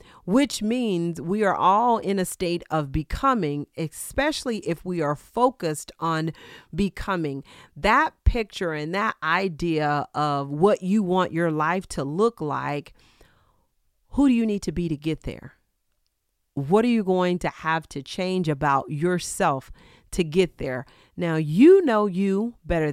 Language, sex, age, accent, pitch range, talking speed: English, female, 40-59, American, 150-205 Hz, 150 wpm